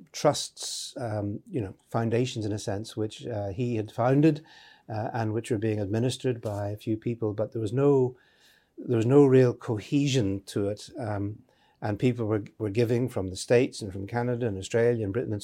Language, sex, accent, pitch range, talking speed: English, male, British, 105-125 Hz, 200 wpm